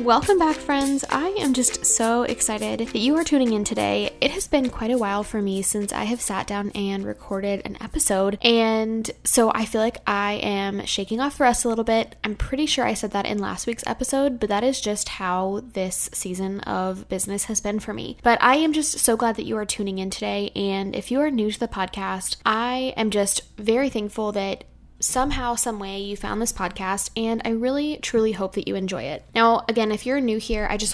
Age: 10-29